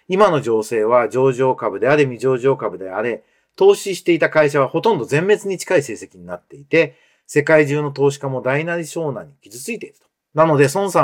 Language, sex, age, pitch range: Japanese, male, 40-59, 130-190 Hz